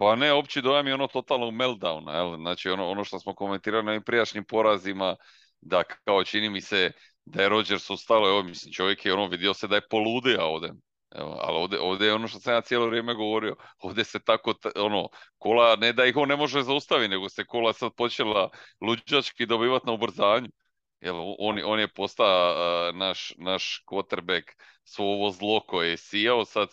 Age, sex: 40-59, male